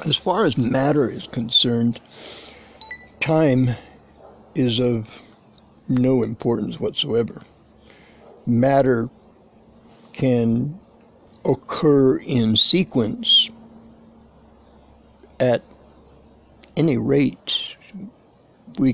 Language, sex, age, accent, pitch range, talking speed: English, male, 60-79, American, 120-145 Hz, 65 wpm